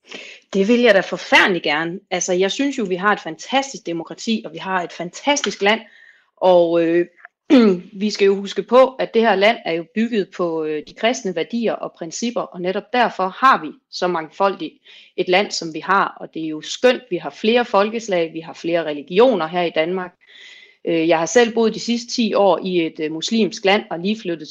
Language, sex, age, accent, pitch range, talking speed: Danish, female, 30-49, native, 170-225 Hz, 205 wpm